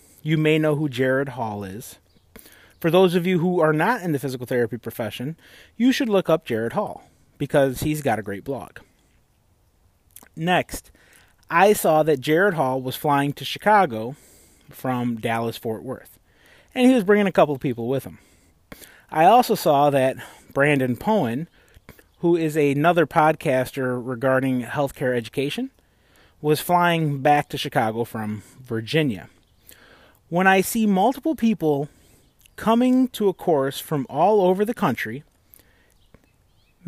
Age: 30-49